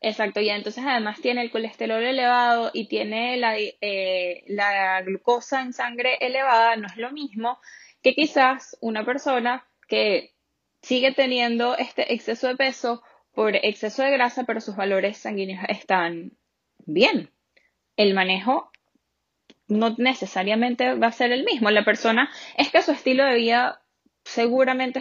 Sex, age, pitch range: female, 10-29, 205-250 Hz